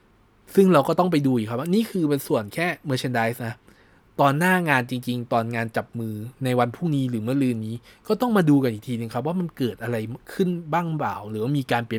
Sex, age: male, 20-39